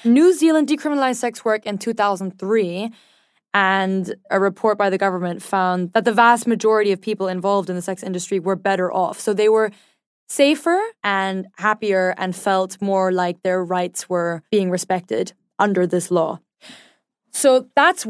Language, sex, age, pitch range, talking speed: English, female, 10-29, 190-230 Hz, 160 wpm